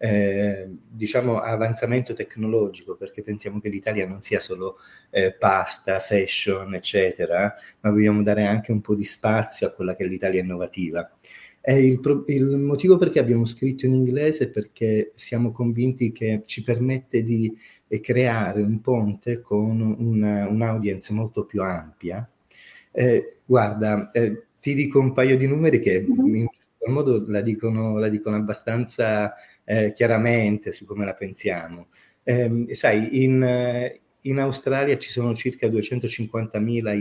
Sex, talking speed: male, 140 wpm